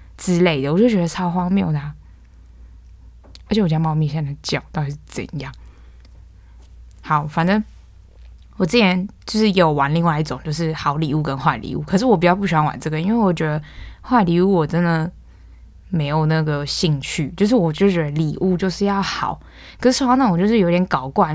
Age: 10-29